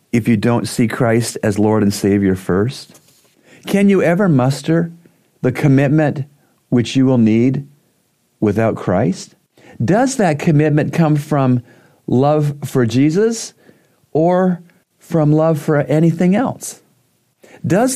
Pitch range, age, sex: 120-170 Hz, 50-69, male